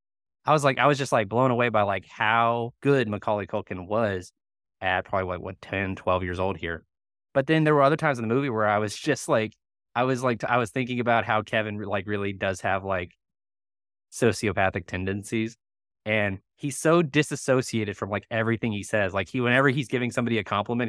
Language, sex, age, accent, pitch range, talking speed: English, male, 20-39, American, 100-130 Hz, 205 wpm